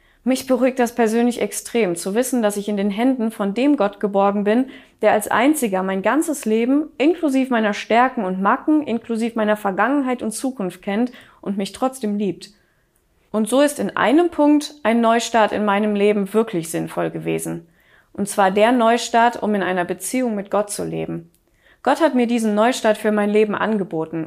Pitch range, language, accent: 205-255 Hz, German, German